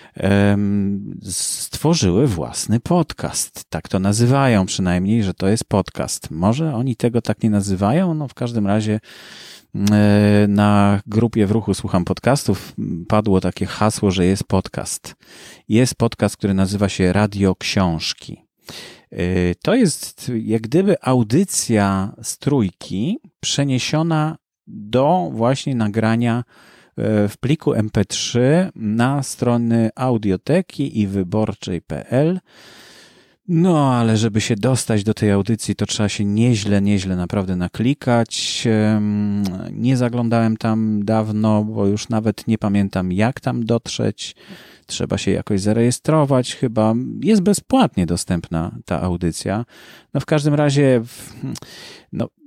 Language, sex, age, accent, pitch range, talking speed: Polish, male, 30-49, native, 100-120 Hz, 115 wpm